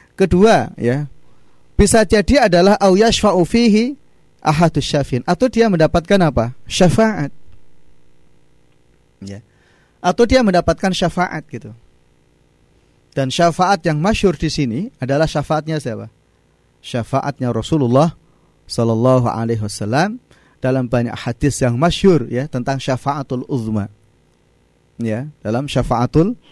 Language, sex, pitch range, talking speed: Indonesian, male, 120-160 Hz, 95 wpm